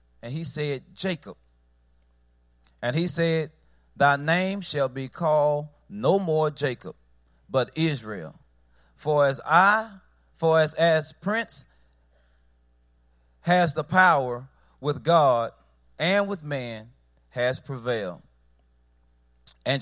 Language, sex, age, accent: Korean, male, 30-49, American